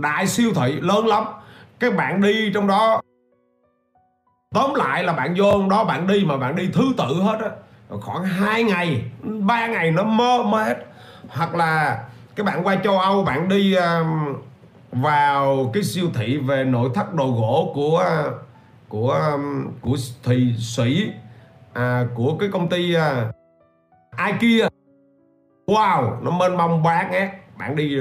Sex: male